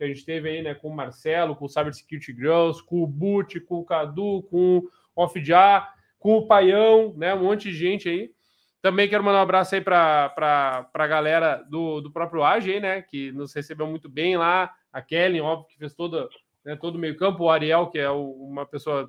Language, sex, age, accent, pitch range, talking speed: Portuguese, male, 20-39, Brazilian, 155-185 Hz, 215 wpm